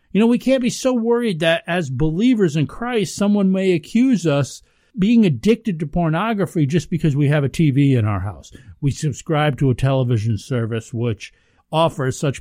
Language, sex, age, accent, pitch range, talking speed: English, male, 50-69, American, 125-185 Hz, 185 wpm